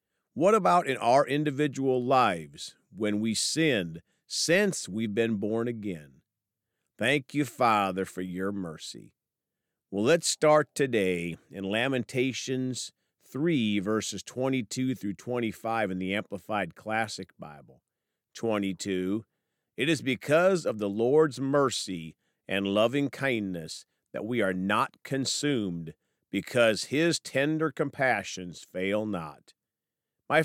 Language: English